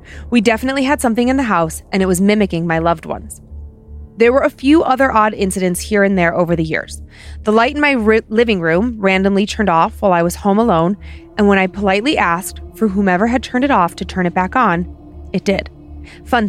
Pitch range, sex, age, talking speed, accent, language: 170-235 Hz, female, 20-39, 220 wpm, American, English